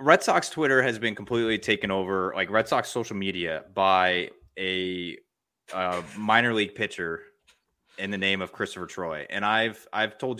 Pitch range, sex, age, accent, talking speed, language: 90-105 Hz, male, 20-39, American, 165 wpm, English